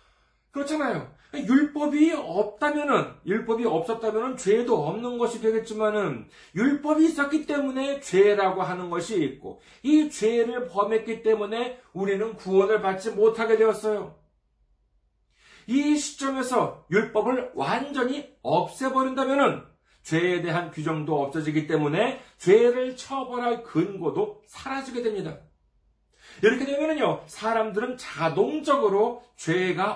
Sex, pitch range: male, 195-265 Hz